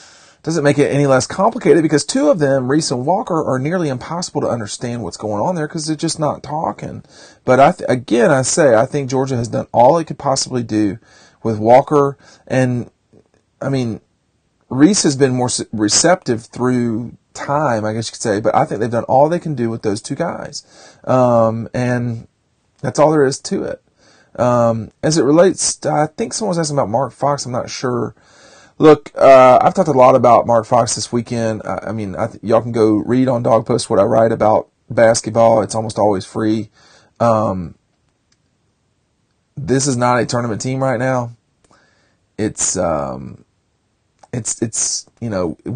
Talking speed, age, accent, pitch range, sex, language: 185 wpm, 40-59, American, 110-135 Hz, male, English